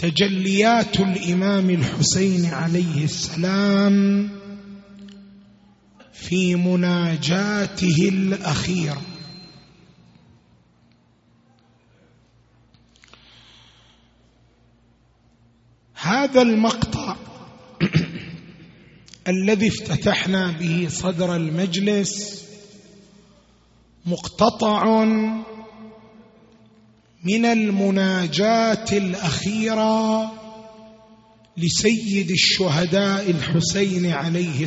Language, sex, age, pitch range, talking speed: Arabic, male, 30-49, 170-215 Hz, 40 wpm